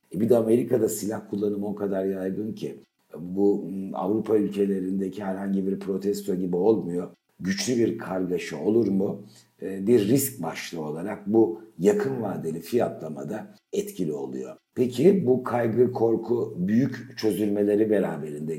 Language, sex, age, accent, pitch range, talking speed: Turkish, male, 60-79, native, 90-115 Hz, 130 wpm